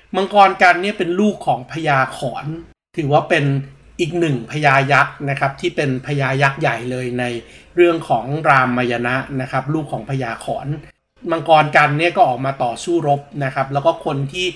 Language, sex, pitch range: Thai, male, 140-175 Hz